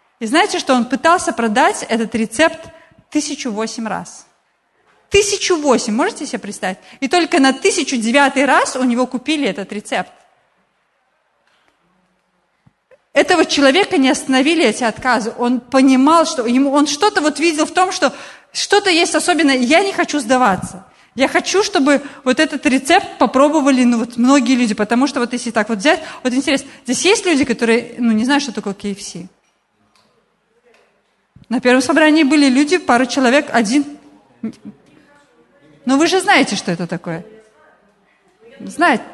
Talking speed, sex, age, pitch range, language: 145 wpm, female, 30-49, 235-315 Hz, Russian